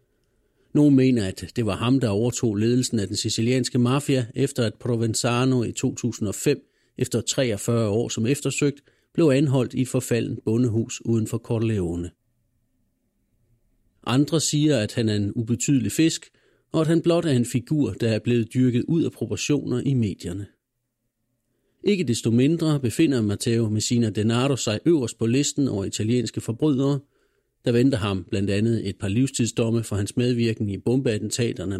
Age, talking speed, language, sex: 40-59, 155 wpm, Danish, male